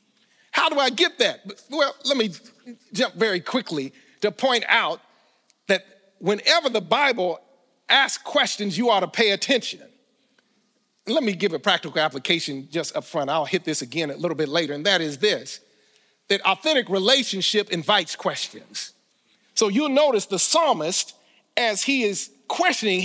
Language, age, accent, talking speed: English, 50-69, American, 155 wpm